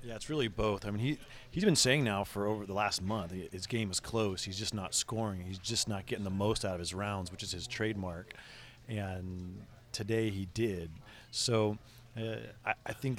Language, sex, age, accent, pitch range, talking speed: English, male, 30-49, American, 95-115 Hz, 220 wpm